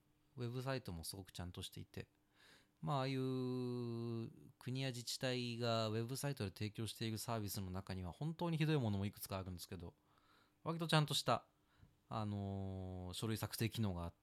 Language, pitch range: Japanese, 95-130 Hz